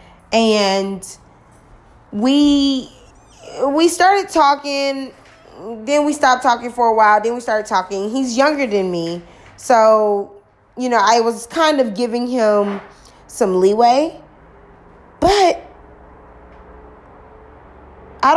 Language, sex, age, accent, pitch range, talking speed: English, female, 20-39, American, 190-265 Hz, 110 wpm